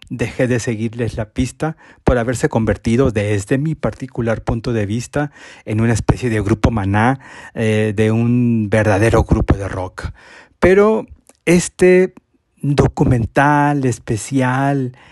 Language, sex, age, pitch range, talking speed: Spanish, male, 40-59, 115-150 Hz, 125 wpm